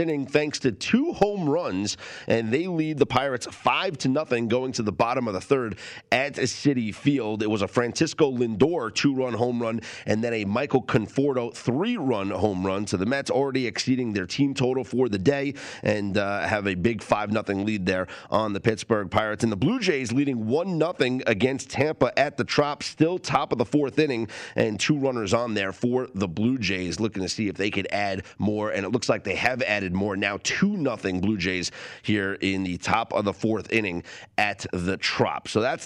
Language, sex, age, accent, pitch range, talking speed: English, male, 30-49, American, 100-140 Hz, 210 wpm